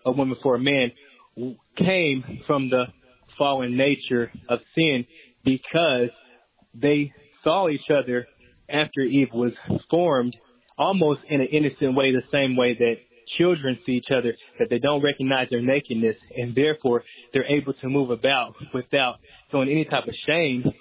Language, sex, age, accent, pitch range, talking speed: English, male, 20-39, American, 125-150 Hz, 155 wpm